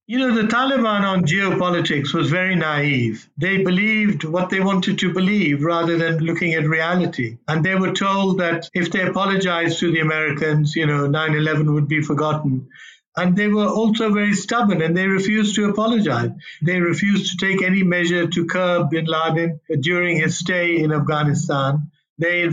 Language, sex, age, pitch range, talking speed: English, male, 60-79, 155-190 Hz, 175 wpm